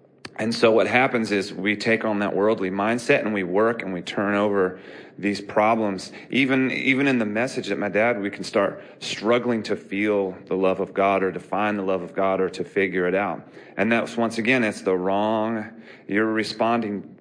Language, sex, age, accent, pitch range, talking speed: English, male, 40-59, American, 95-115 Hz, 205 wpm